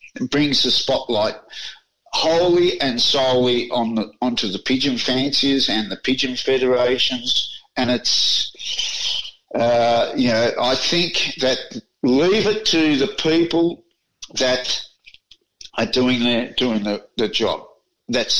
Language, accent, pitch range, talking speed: English, Australian, 120-150 Hz, 125 wpm